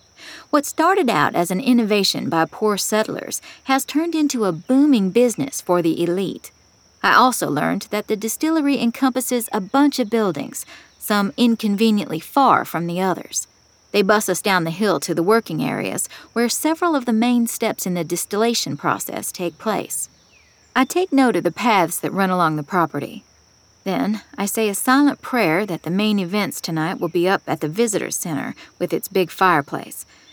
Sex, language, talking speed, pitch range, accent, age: female, English, 180 wpm, 180-245 Hz, American, 40-59